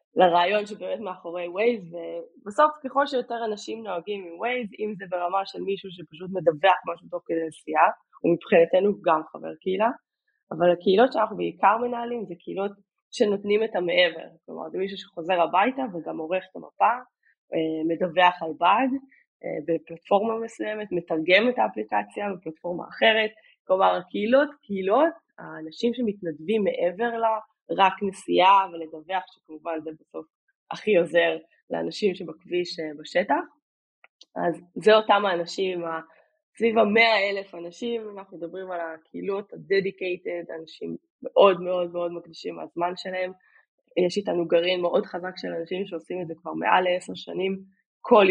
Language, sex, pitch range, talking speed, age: Hebrew, female, 170-220 Hz, 130 wpm, 20-39